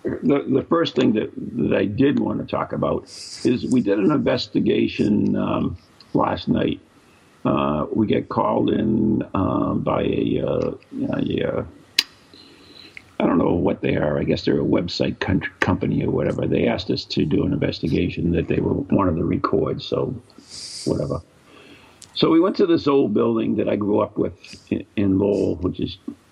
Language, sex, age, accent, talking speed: English, male, 50-69, American, 175 wpm